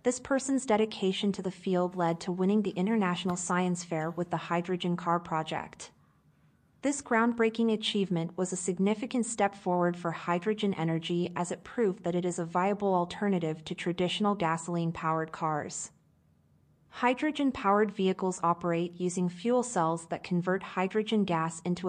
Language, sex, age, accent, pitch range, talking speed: English, female, 30-49, American, 170-210 Hz, 145 wpm